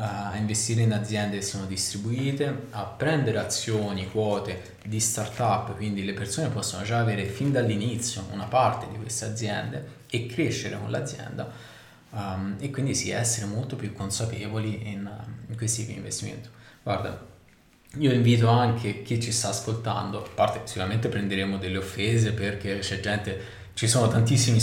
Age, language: 20-39, Italian